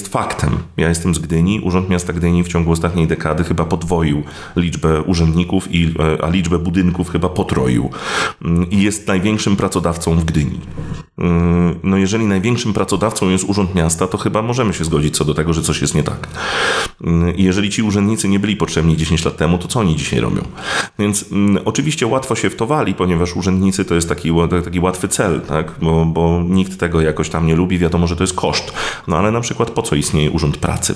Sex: male